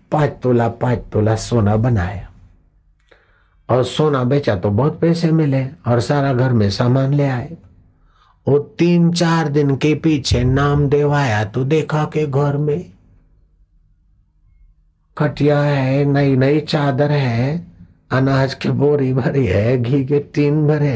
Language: Hindi